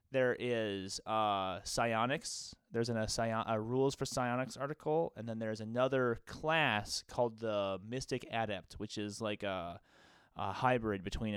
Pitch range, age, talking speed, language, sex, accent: 105-140 Hz, 30-49, 150 wpm, English, male, American